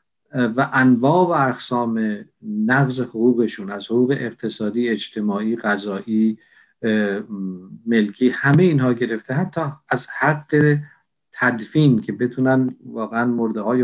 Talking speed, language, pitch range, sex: 105 wpm, Persian, 110-135 Hz, male